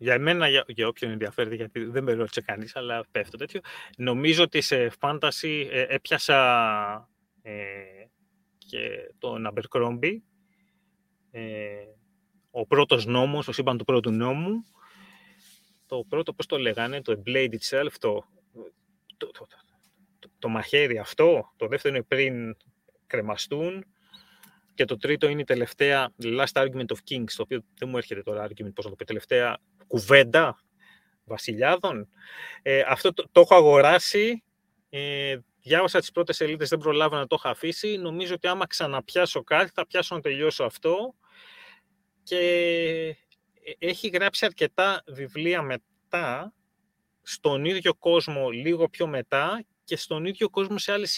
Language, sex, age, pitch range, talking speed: Greek, male, 30-49, 135-195 Hz, 140 wpm